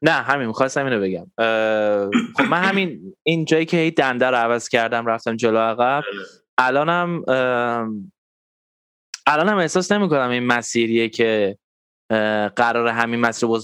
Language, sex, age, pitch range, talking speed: Persian, male, 10-29, 110-150 Hz, 130 wpm